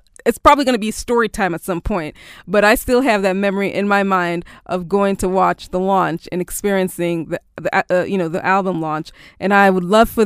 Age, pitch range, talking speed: 20-39, 200-255 Hz, 235 wpm